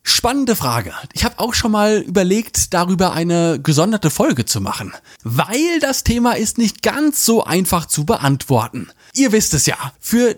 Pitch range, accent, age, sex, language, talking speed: 145-235 Hz, German, 30-49, male, German, 170 wpm